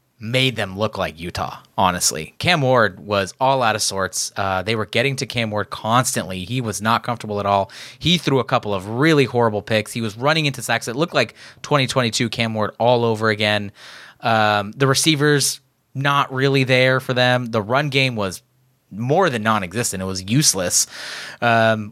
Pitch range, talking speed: 105-140 Hz, 185 wpm